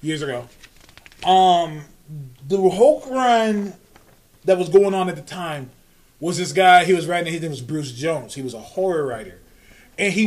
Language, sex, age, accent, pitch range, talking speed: English, male, 20-39, American, 180-250 Hz, 180 wpm